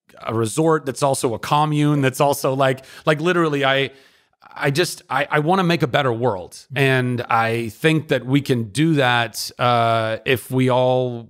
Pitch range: 120-140 Hz